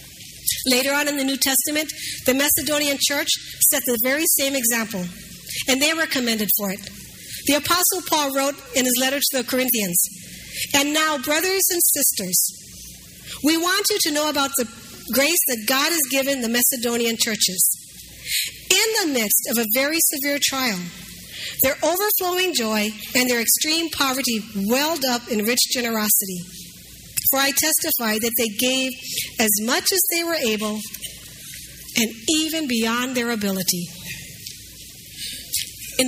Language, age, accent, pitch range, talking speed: English, 50-69, American, 215-290 Hz, 145 wpm